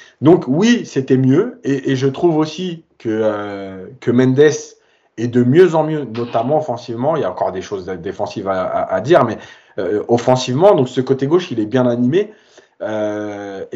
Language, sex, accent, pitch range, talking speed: French, male, French, 125-170 Hz, 180 wpm